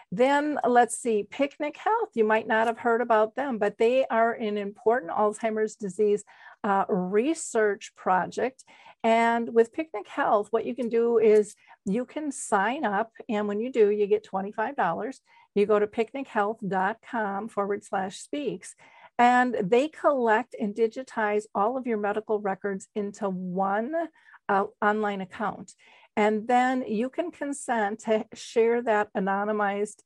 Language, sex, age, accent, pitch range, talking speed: English, female, 50-69, American, 200-235 Hz, 150 wpm